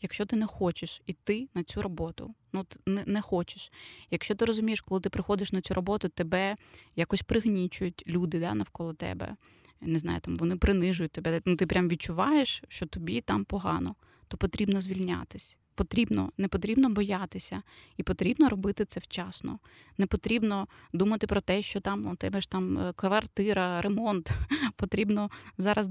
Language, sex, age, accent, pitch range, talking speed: Ukrainian, female, 20-39, native, 175-210 Hz, 160 wpm